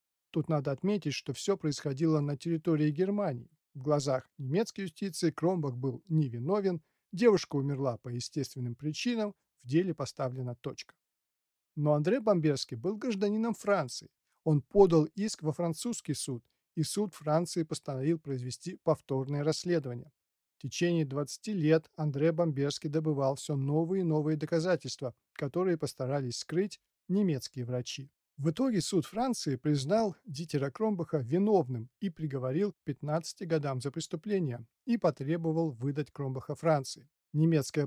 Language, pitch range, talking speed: Russian, 140-175 Hz, 130 wpm